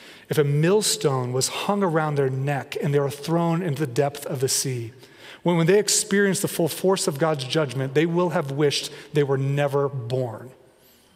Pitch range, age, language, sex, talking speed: 145-190 Hz, 30-49, English, male, 190 wpm